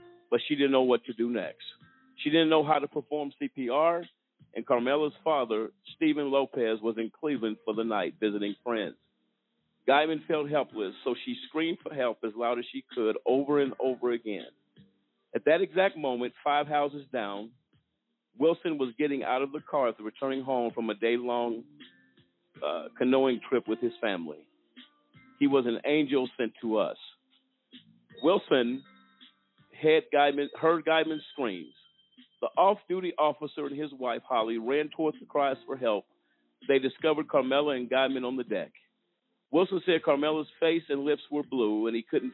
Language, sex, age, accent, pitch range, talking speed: English, male, 50-69, American, 125-165 Hz, 160 wpm